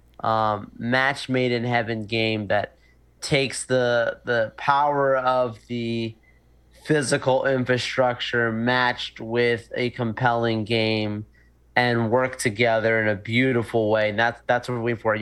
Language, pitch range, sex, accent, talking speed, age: English, 115-135 Hz, male, American, 135 wpm, 30-49